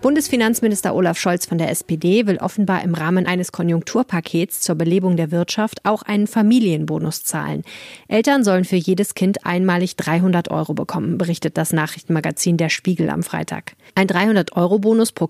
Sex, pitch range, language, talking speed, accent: female, 170-205 Hz, German, 155 wpm, German